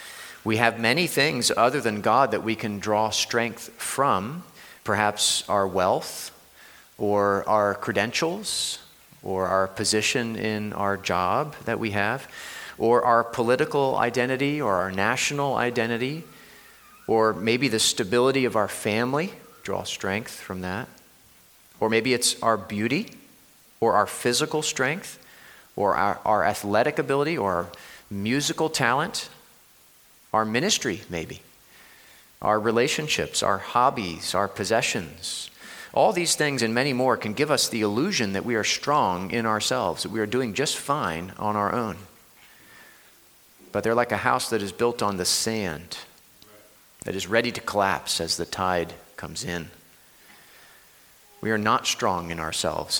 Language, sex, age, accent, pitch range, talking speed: English, male, 40-59, American, 100-125 Hz, 145 wpm